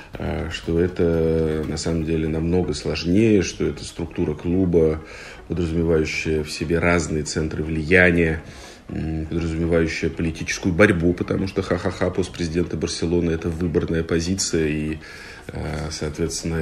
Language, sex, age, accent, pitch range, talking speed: Russian, male, 40-59, native, 80-95 Hz, 110 wpm